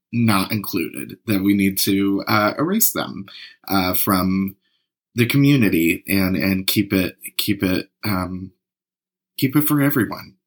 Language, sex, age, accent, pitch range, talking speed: English, male, 30-49, American, 95-110 Hz, 140 wpm